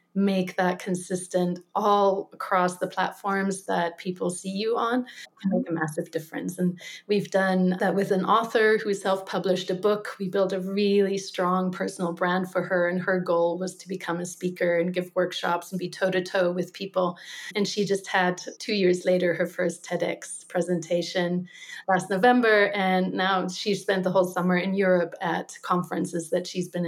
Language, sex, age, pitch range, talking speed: English, female, 30-49, 180-195 Hz, 180 wpm